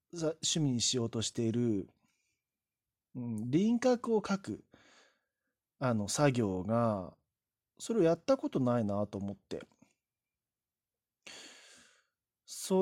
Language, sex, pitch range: Japanese, male, 115-165 Hz